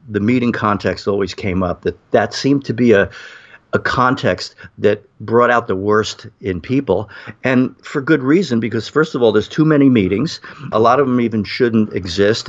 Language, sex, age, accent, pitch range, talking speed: English, male, 50-69, American, 100-120 Hz, 190 wpm